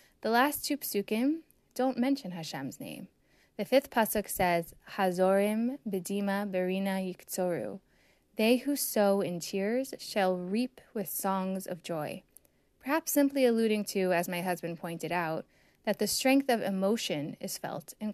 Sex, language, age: female, English, 10-29